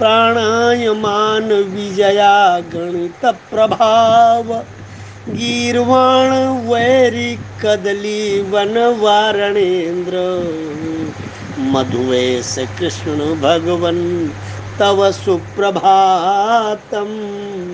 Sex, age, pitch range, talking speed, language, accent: male, 50-69, 155-230 Hz, 35 wpm, Hindi, native